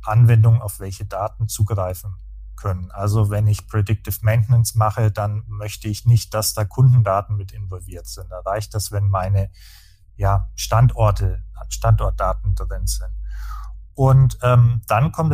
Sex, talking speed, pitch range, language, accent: male, 140 wpm, 100-120 Hz, German, German